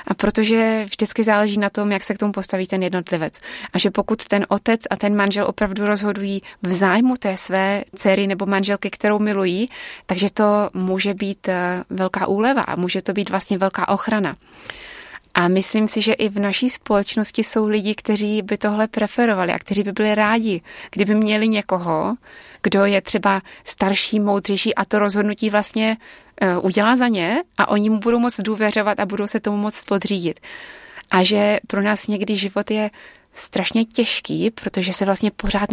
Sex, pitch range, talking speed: female, 195-215 Hz, 175 wpm